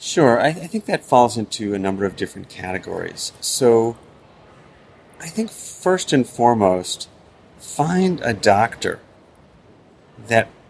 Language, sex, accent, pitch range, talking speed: English, male, American, 110-155 Hz, 125 wpm